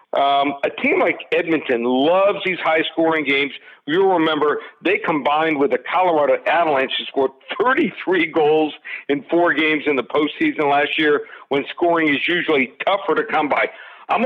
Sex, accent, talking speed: male, American, 165 wpm